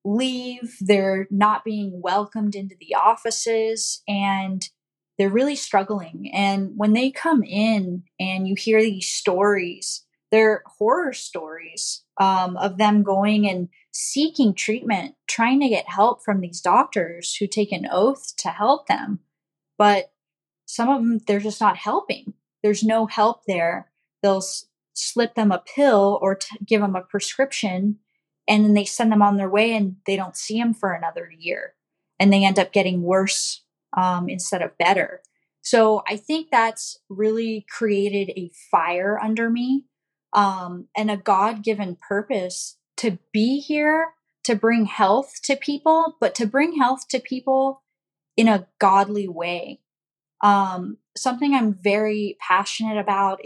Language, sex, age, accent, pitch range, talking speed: English, female, 10-29, American, 190-230 Hz, 150 wpm